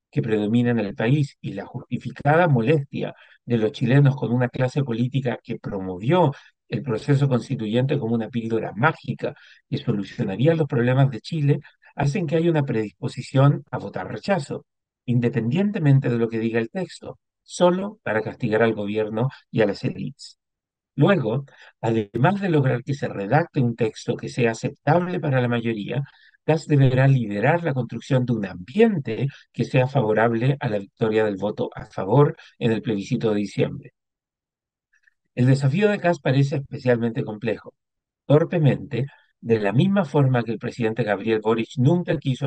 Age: 50-69